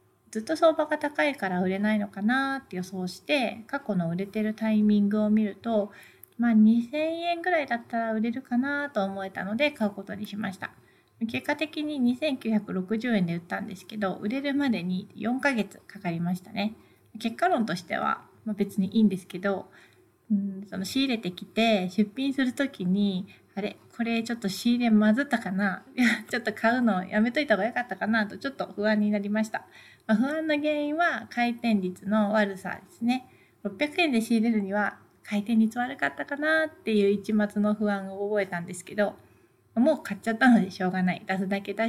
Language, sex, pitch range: Japanese, female, 195-245 Hz